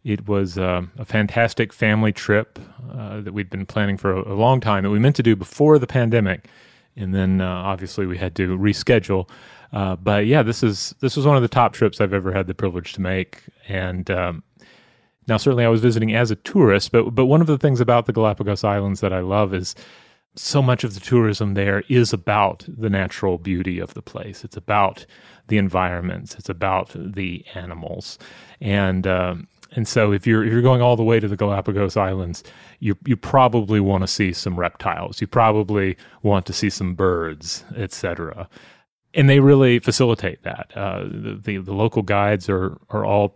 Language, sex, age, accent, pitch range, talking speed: English, male, 30-49, American, 95-115 Hz, 200 wpm